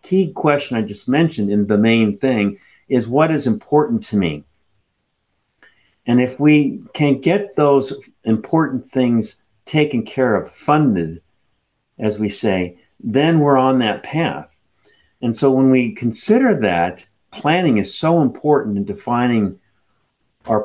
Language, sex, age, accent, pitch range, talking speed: English, male, 50-69, American, 110-145 Hz, 140 wpm